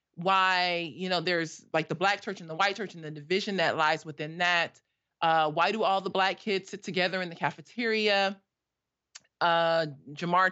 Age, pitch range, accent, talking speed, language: 30-49, 170-215 Hz, American, 190 wpm, English